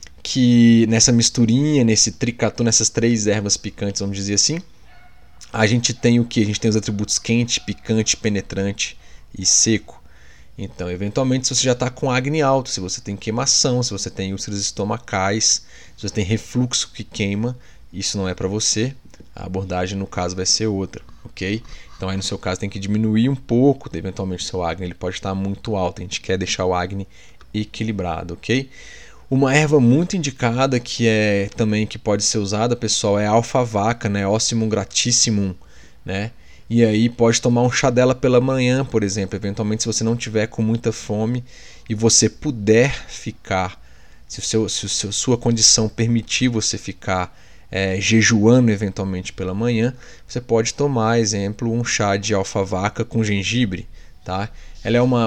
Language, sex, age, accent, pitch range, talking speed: Portuguese, male, 20-39, Brazilian, 100-120 Hz, 180 wpm